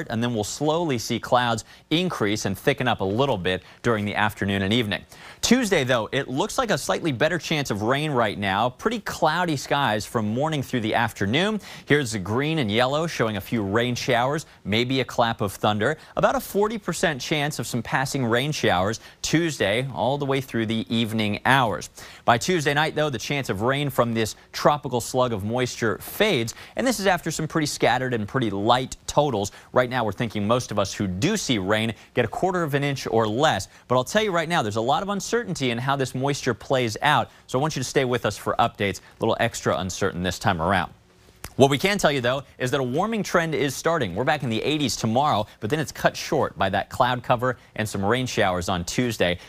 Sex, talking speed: male, 225 wpm